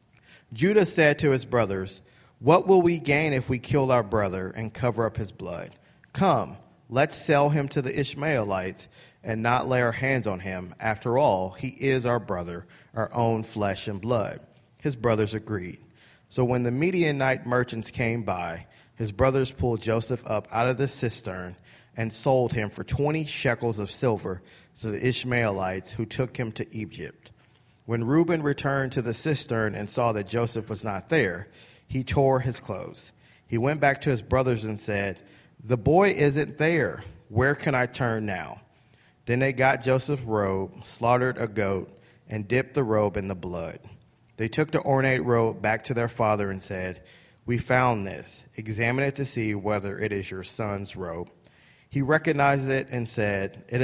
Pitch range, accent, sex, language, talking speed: 105-135 Hz, American, male, English, 175 wpm